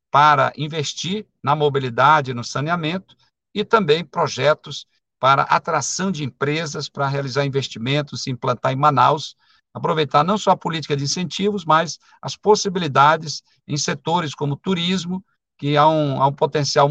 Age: 50-69